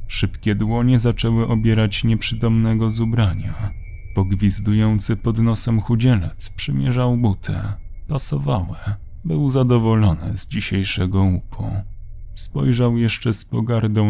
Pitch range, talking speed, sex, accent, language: 95-120 Hz, 100 wpm, male, native, Polish